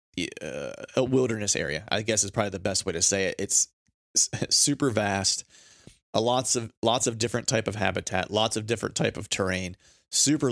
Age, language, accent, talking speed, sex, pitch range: 30-49, English, American, 190 wpm, male, 95-115 Hz